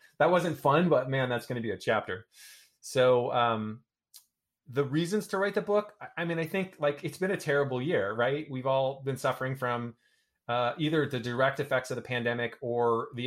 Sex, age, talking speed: male, 20-39, 205 wpm